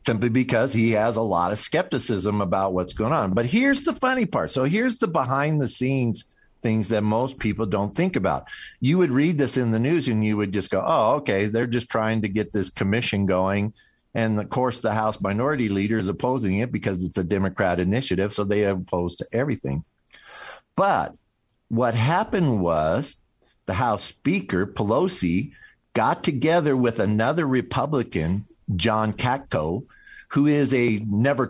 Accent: American